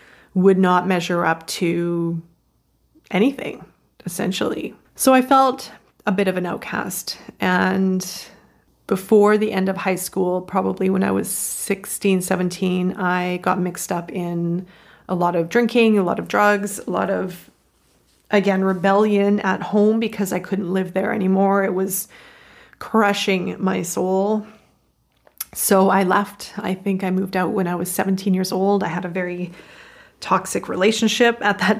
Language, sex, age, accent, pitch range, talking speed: English, female, 30-49, American, 175-200 Hz, 155 wpm